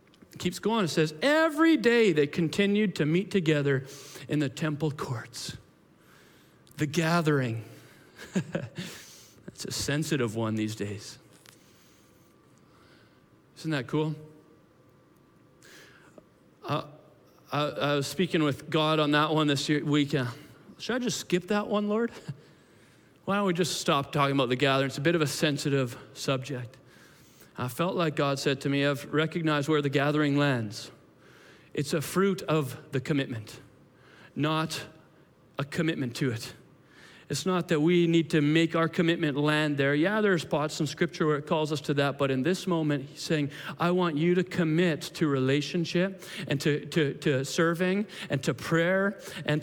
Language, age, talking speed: Russian, 40-59, 155 wpm